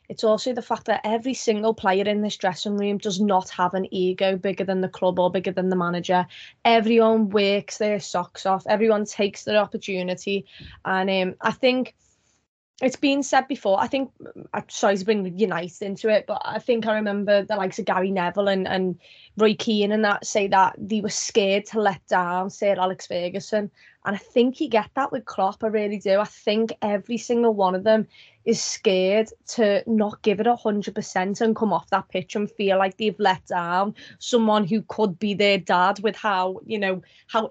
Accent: British